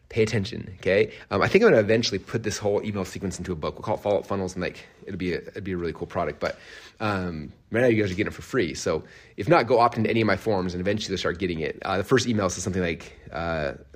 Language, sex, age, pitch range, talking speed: English, male, 30-49, 95-110 Hz, 295 wpm